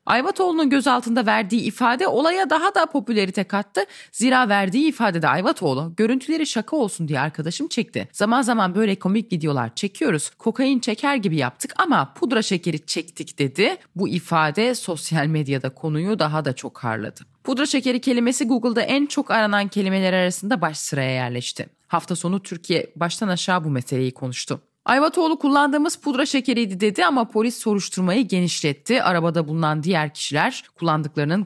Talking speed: 150 wpm